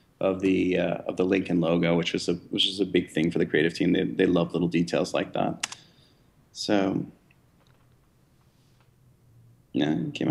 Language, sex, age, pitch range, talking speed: English, male, 20-39, 95-105 Hz, 175 wpm